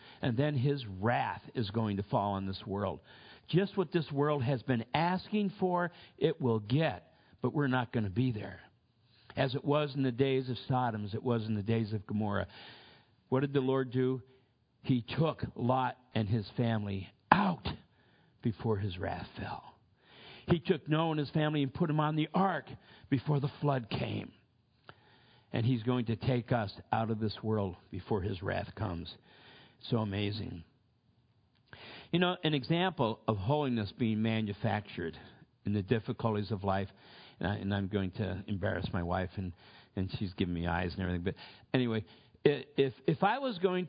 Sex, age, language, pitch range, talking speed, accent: male, 50-69, English, 105-140 Hz, 180 wpm, American